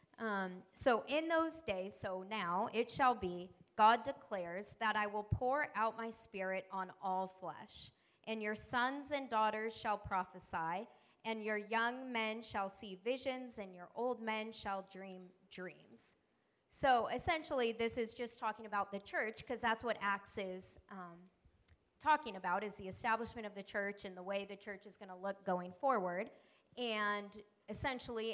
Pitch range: 190-225 Hz